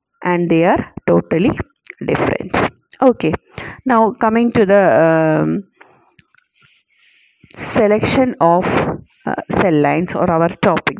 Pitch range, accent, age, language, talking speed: 175-200 Hz, native, 30-49, Malayalam, 95 wpm